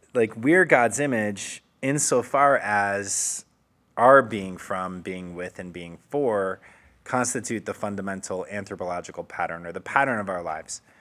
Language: English